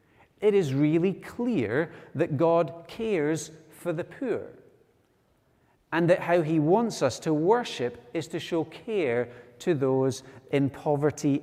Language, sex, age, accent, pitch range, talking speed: English, male, 30-49, British, 125-160 Hz, 135 wpm